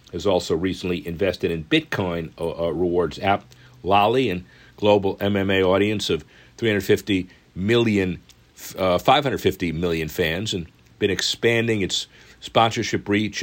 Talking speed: 125 wpm